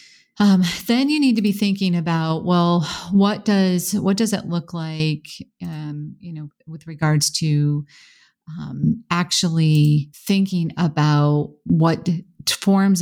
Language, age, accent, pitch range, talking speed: English, 40-59, American, 155-185 Hz, 135 wpm